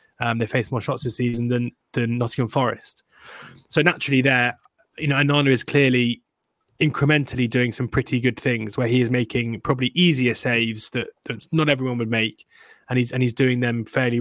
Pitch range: 120-135 Hz